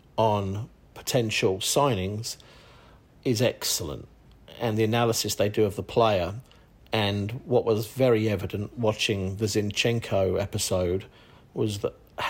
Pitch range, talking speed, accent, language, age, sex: 105-120 Hz, 115 wpm, British, English, 50-69, male